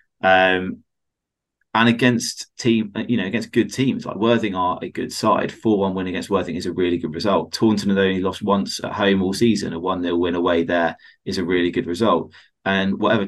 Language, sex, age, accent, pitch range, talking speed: English, male, 20-39, British, 90-110 Hz, 210 wpm